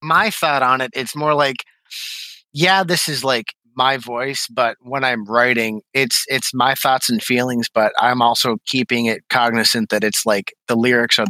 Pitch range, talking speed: 105-125 Hz, 185 wpm